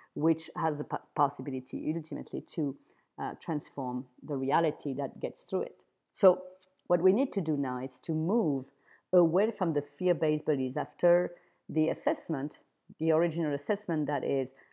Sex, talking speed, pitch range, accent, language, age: female, 150 wpm, 145-170 Hz, French, English, 40-59